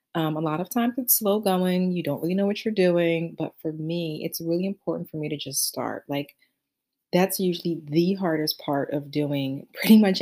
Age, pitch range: 30-49, 150-185 Hz